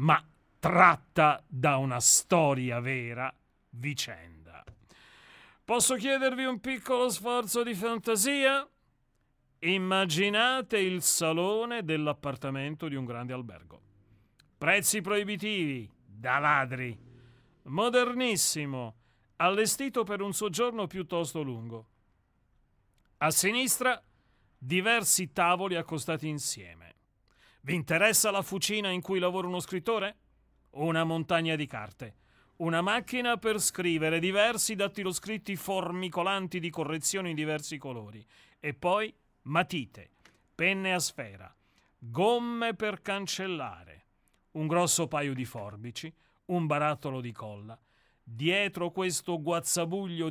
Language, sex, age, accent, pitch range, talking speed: Italian, male, 40-59, native, 125-195 Hz, 100 wpm